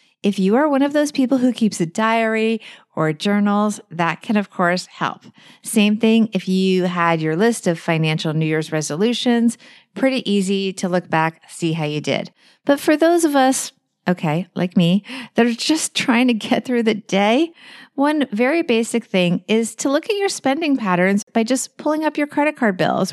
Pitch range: 195-275 Hz